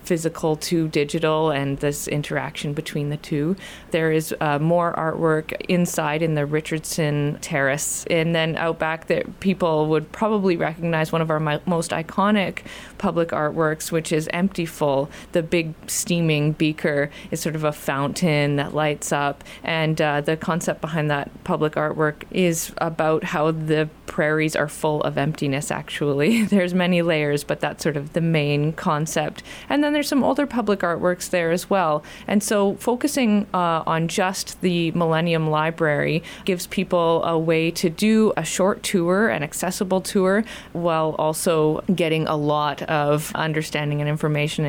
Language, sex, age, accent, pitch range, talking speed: English, female, 30-49, American, 155-180 Hz, 160 wpm